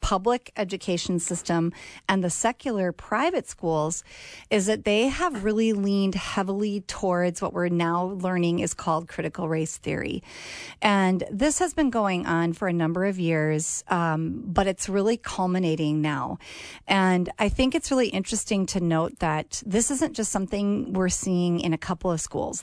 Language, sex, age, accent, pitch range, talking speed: English, female, 40-59, American, 170-215 Hz, 165 wpm